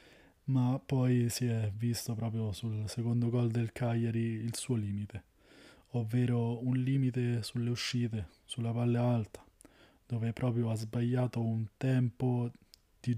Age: 20-39